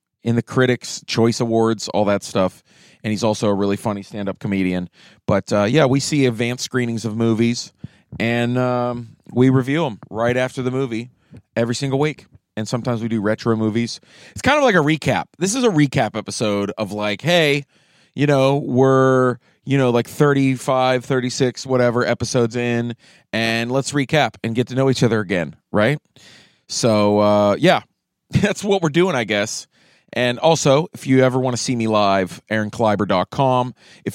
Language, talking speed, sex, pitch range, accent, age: English, 175 wpm, male, 110-135 Hz, American, 30-49